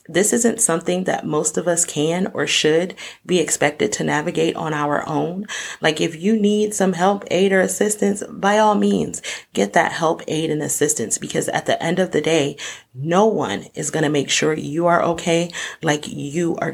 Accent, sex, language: American, female, English